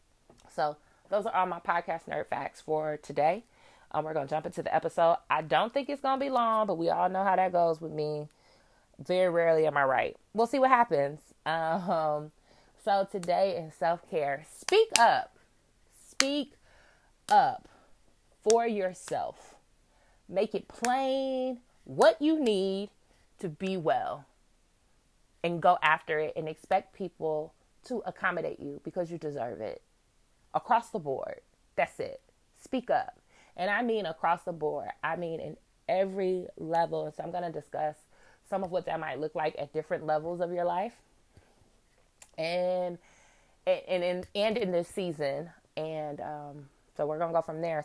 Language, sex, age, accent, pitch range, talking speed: English, female, 20-39, American, 155-210 Hz, 165 wpm